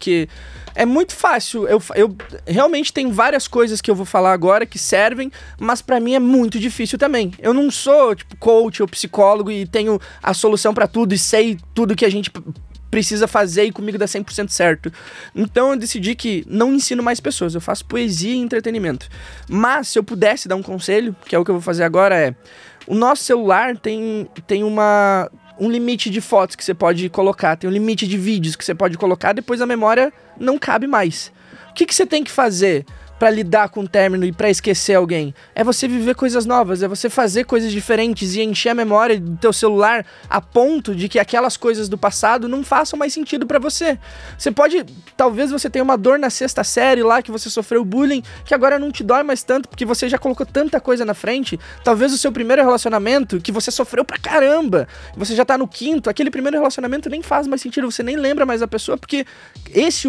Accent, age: Brazilian, 20-39